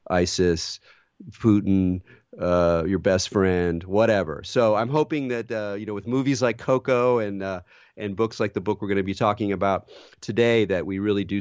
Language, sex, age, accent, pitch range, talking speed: English, male, 40-59, American, 95-115 Hz, 190 wpm